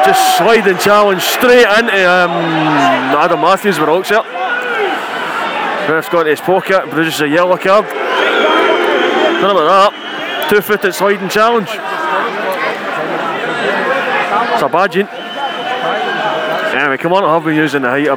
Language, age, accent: English, 20-39, British